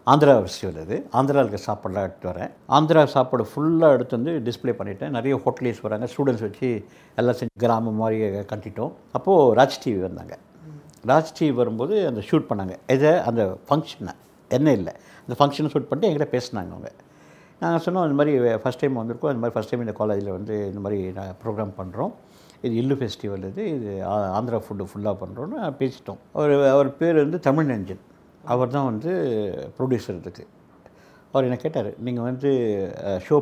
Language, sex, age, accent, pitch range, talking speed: Tamil, male, 60-79, native, 105-150 Hz, 165 wpm